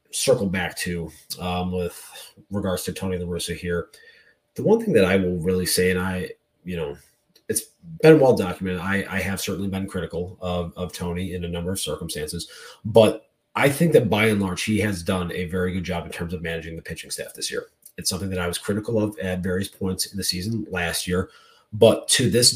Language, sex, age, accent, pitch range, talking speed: English, male, 30-49, American, 90-115 Hz, 220 wpm